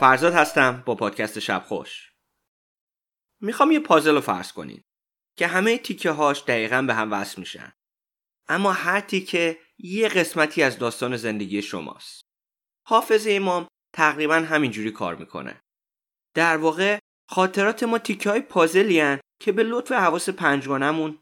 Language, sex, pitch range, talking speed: Persian, male, 135-200 Hz, 140 wpm